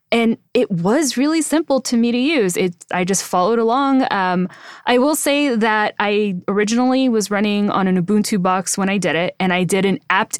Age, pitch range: 20-39, 185-225 Hz